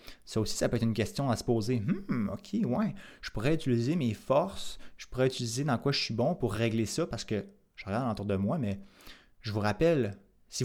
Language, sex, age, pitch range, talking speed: French, male, 20-39, 110-140 Hz, 230 wpm